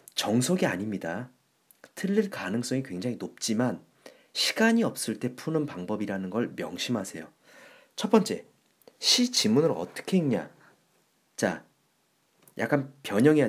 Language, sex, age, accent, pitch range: Korean, male, 40-59, native, 130-195 Hz